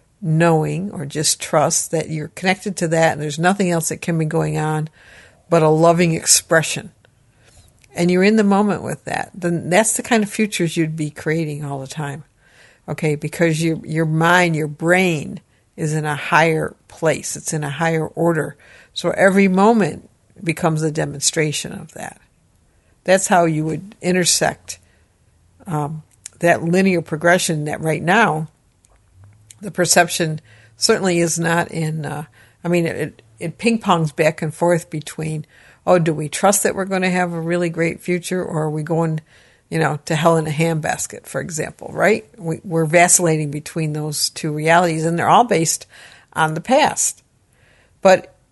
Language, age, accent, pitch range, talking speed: English, 60-79, American, 150-175 Hz, 170 wpm